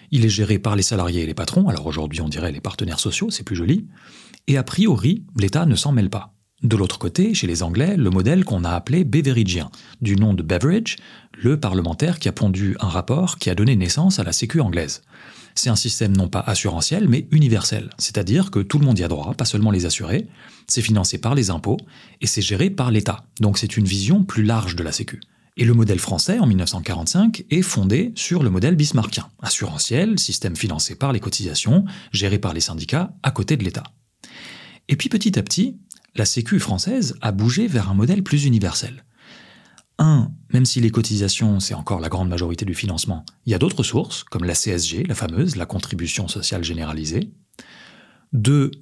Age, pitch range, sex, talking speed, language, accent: 30-49, 95-150 Hz, male, 205 wpm, French, French